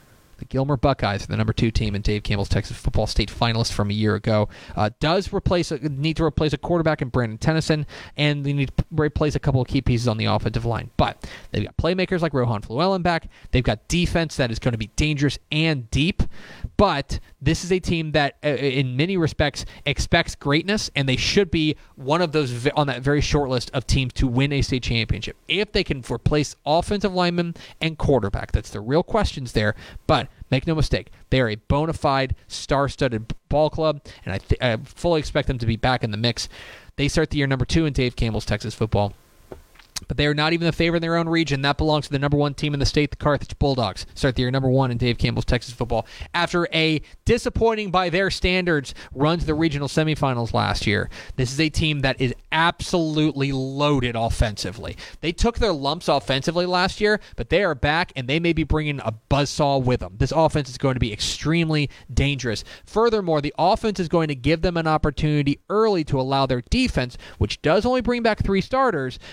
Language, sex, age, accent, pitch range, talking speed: English, male, 30-49, American, 120-160 Hz, 215 wpm